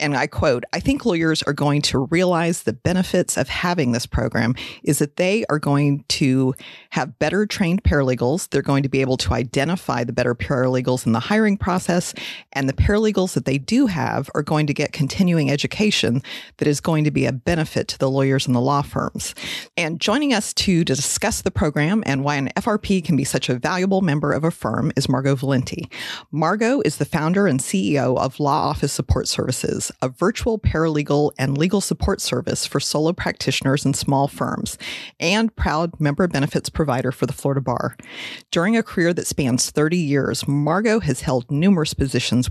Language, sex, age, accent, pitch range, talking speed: English, female, 30-49, American, 135-180 Hz, 190 wpm